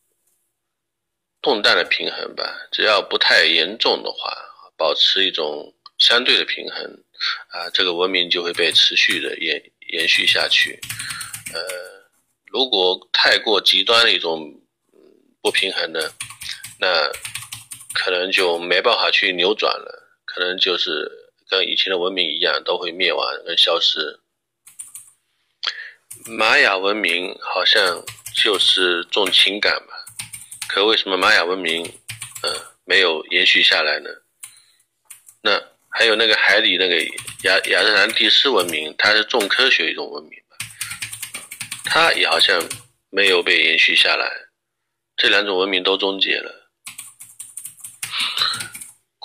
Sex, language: male, Chinese